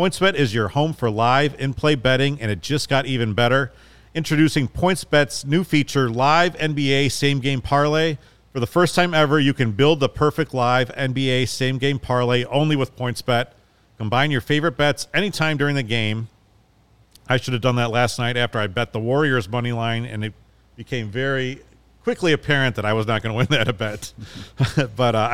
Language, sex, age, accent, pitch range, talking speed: English, male, 40-59, American, 115-145 Hz, 200 wpm